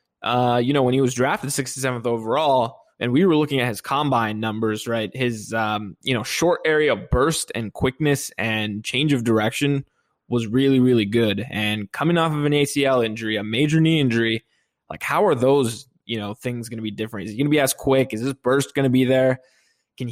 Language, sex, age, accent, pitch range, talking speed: English, male, 20-39, American, 115-135 Hz, 215 wpm